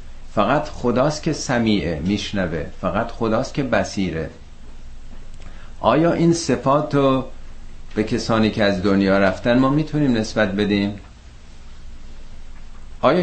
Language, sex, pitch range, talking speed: Persian, male, 85-110 Hz, 110 wpm